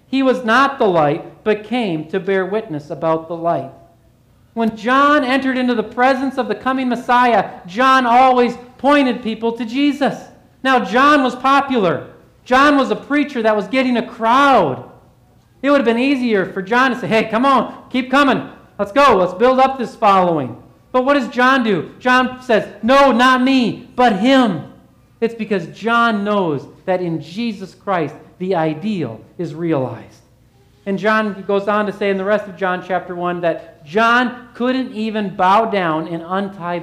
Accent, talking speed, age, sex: American, 175 wpm, 40-59, male